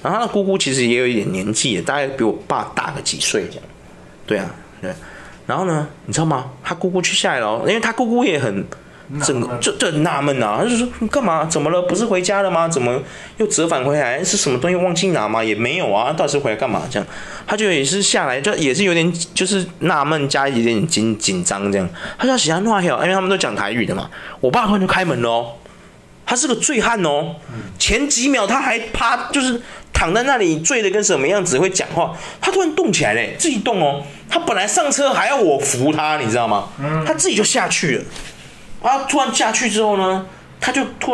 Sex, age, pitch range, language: male, 20-39, 140-225 Hz, Chinese